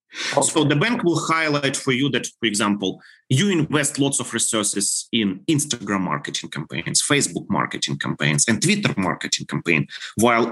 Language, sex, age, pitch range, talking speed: English, male, 30-49, 110-155 Hz, 155 wpm